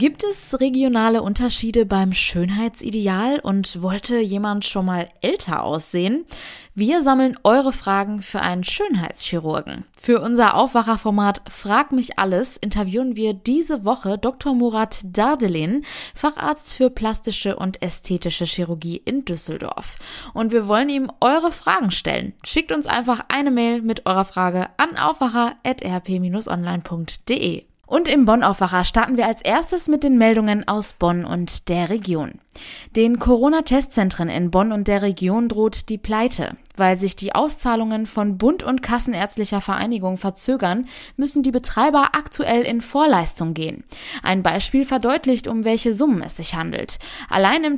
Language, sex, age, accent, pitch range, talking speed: German, female, 20-39, German, 195-255 Hz, 140 wpm